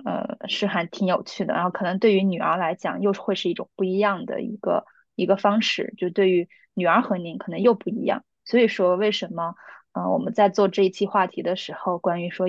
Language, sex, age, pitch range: Chinese, female, 20-39, 180-210 Hz